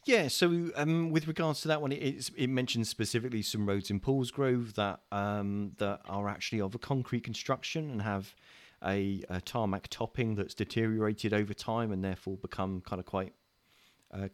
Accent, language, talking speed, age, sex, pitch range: British, English, 180 wpm, 30-49, male, 90-110 Hz